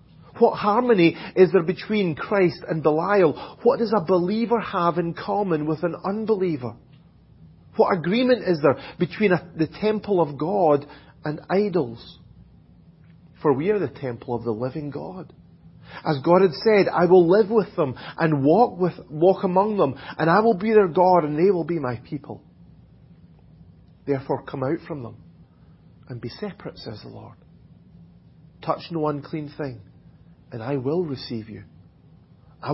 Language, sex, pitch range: English, male, 125-175 Hz